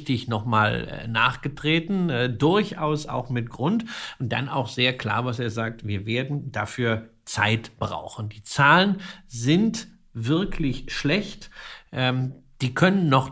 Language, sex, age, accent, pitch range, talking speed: German, male, 50-69, German, 115-155 Hz, 135 wpm